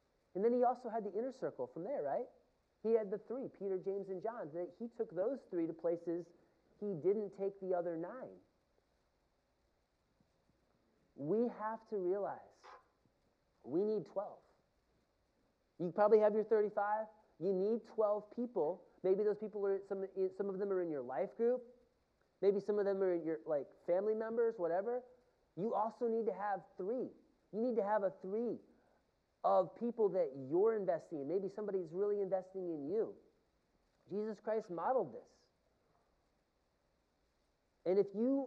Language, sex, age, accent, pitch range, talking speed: English, male, 30-49, American, 170-220 Hz, 160 wpm